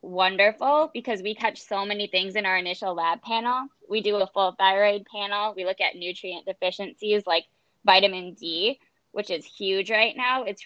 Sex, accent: female, American